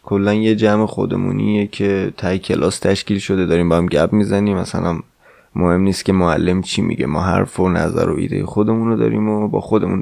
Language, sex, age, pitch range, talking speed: Persian, male, 20-39, 95-115 Hz, 190 wpm